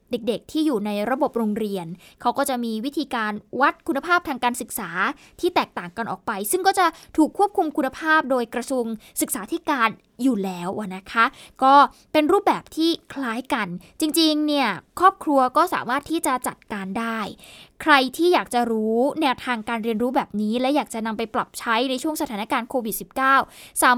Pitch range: 230-300 Hz